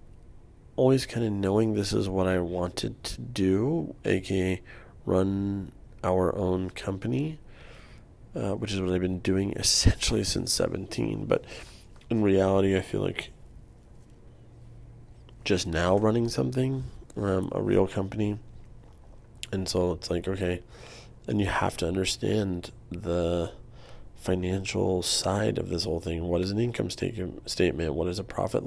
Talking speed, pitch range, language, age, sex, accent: 140 wpm, 90-115 Hz, English, 30-49, male, American